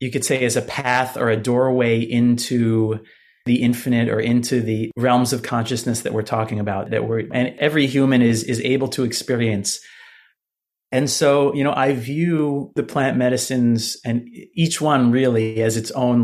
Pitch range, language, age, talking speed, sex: 115-135 Hz, English, 30-49, 175 wpm, male